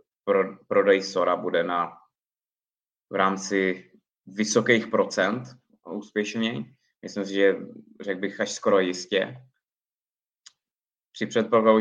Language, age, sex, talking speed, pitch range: Czech, 20-39, male, 100 wpm, 95-115 Hz